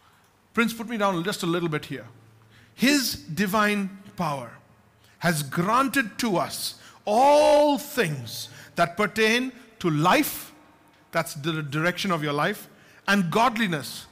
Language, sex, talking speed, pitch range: English, male, 130 wpm, 165-220 Hz